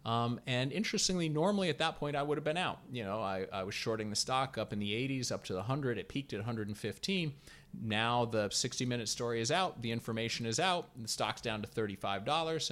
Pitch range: 115-150 Hz